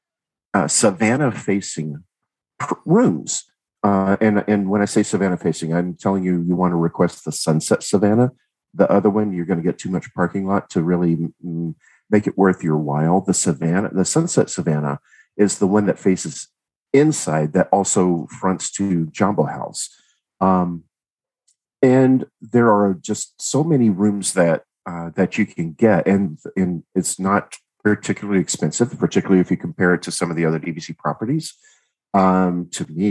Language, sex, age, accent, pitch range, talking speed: English, male, 50-69, American, 85-105 Hz, 170 wpm